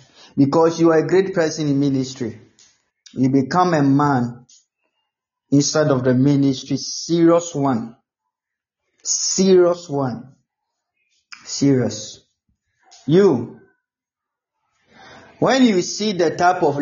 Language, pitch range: Japanese, 140-185 Hz